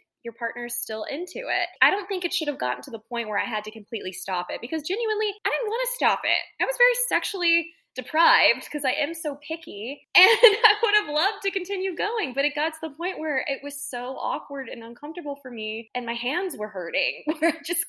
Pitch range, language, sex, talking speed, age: 205-320 Hz, English, female, 235 wpm, 10-29